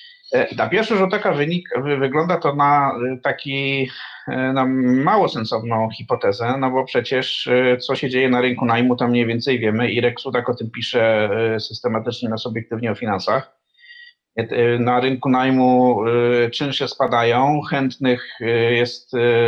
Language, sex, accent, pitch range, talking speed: Polish, male, native, 115-140 Hz, 140 wpm